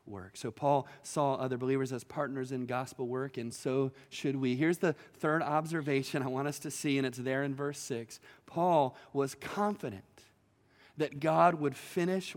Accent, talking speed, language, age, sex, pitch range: American, 175 wpm, English, 30-49, male, 140-210 Hz